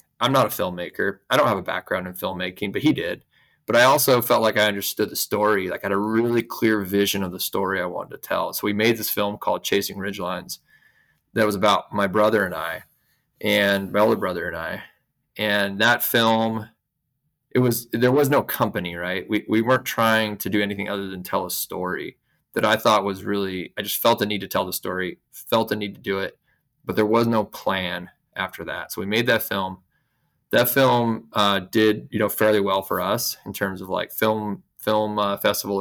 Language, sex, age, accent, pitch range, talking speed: English, male, 20-39, American, 100-115 Hz, 220 wpm